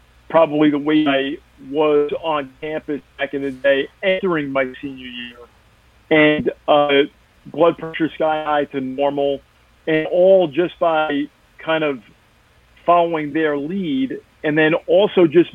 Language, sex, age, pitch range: English, male, 40-59, 140-175 Hz